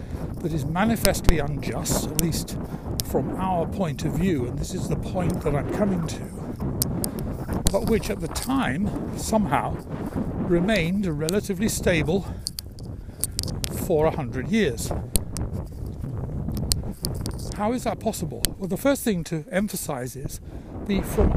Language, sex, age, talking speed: English, male, 60-79, 130 wpm